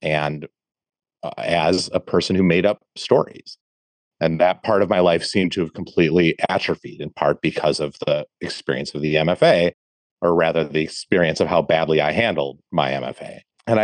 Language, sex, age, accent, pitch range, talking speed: English, male, 30-49, American, 80-95 Hz, 180 wpm